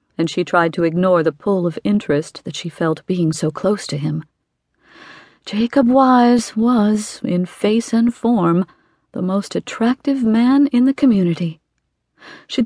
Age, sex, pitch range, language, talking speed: 40-59, female, 180-235 Hz, English, 150 wpm